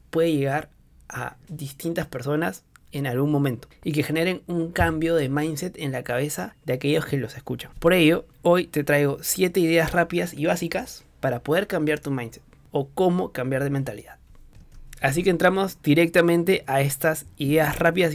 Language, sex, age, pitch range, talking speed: Spanish, male, 20-39, 135-165 Hz, 170 wpm